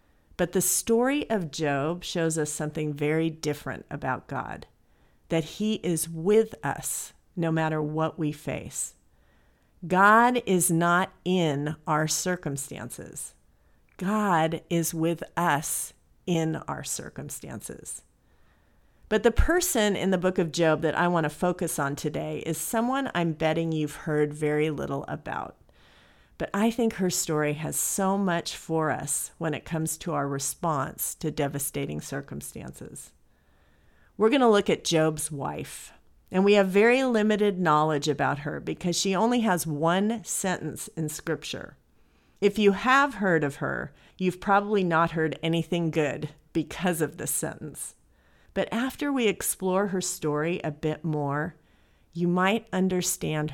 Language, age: English, 50-69